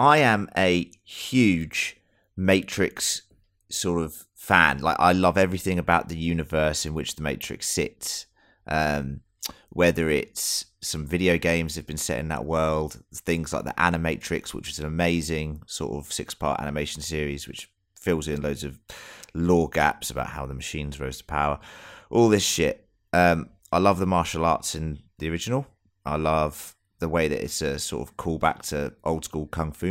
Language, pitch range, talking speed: English, 75-95 Hz, 175 wpm